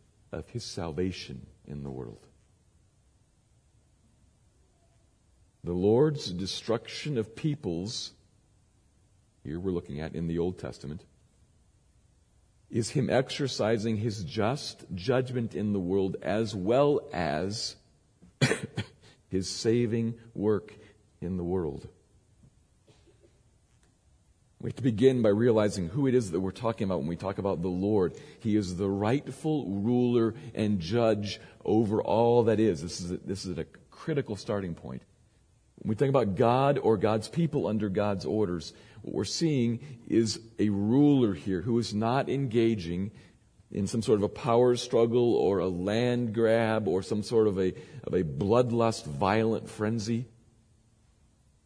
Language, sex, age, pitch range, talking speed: English, male, 50-69, 95-120 Hz, 140 wpm